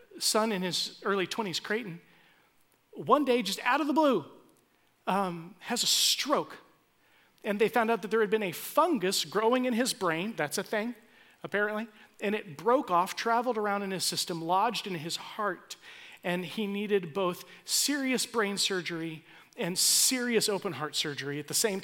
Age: 40-59